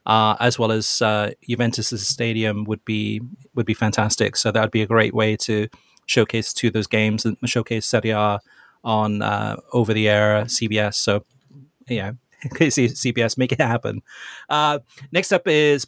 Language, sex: English, male